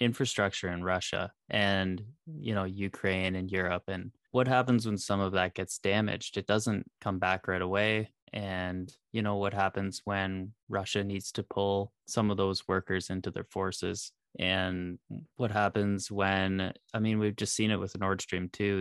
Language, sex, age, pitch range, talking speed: English, male, 20-39, 95-105 Hz, 175 wpm